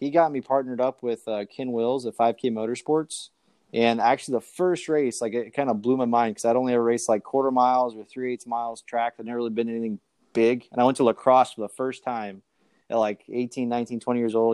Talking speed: 240 wpm